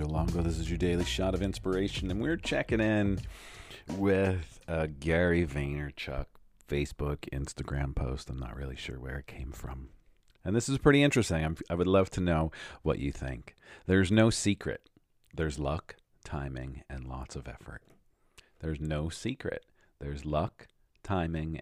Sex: male